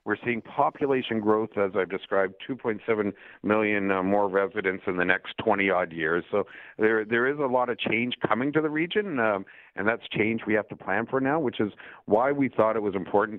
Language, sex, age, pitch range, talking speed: English, male, 50-69, 105-135 Hz, 205 wpm